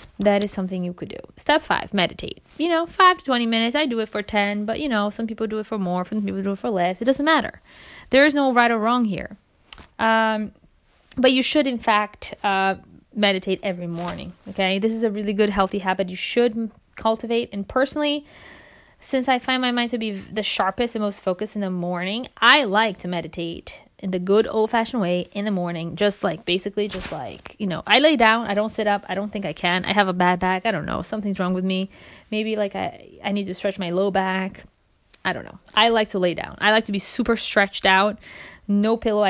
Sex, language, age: female, English, 20-39